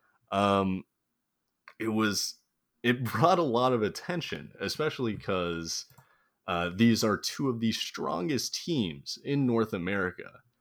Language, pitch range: English, 90-115 Hz